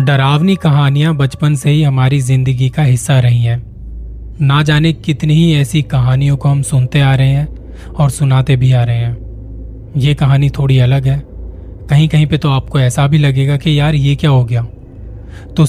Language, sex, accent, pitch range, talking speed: Hindi, male, native, 125-155 Hz, 185 wpm